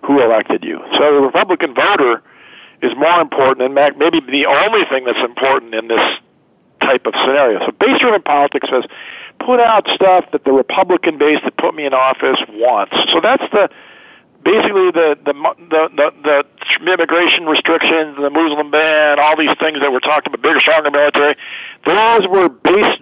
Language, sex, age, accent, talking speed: English, male, 50-69, American, 175 wpm